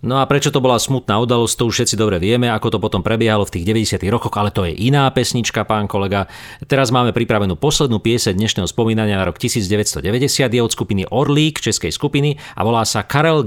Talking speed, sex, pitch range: 210 wpm, male, 110-135 Hz